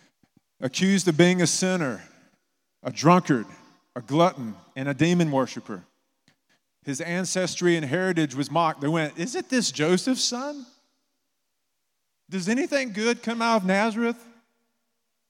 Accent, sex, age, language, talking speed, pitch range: American, male, 40-59, English, 130 wpm, 125-185 Hz